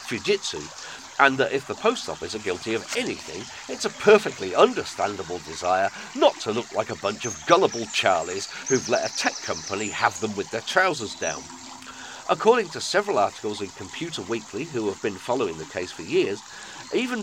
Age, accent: 40-59, British